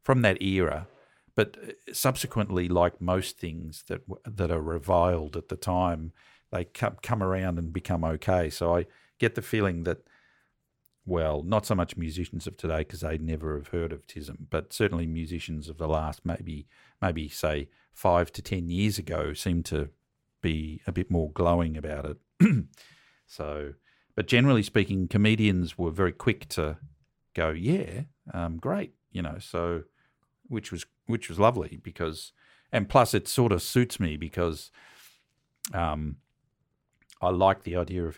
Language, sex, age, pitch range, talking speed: English, male, 50-69, 80-105 Hz, 160 wpm